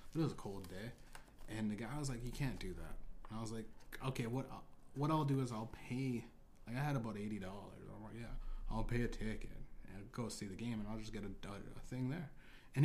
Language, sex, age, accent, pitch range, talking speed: English, male, 20-39, American, 110-130 Hz, 245 wpm